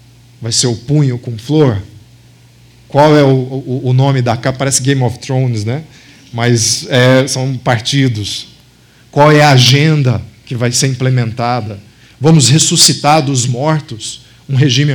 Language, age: Portuguese, 40-59